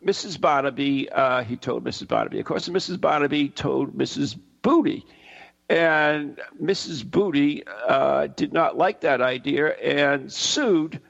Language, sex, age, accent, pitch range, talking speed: English, male, 60-79, American, 150-200 Hz, 135 wpm